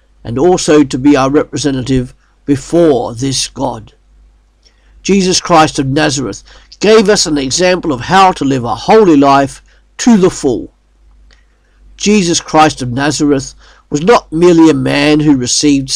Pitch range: 120-160 Hz